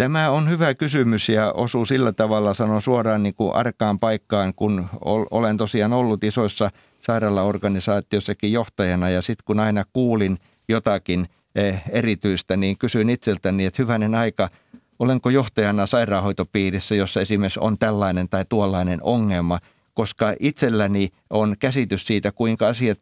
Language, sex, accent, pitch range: Finnish, male, native, 105-125 Hz